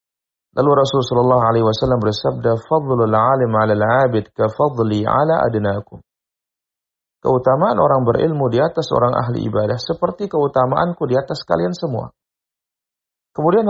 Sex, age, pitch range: male, 40-59, 105-140 Hz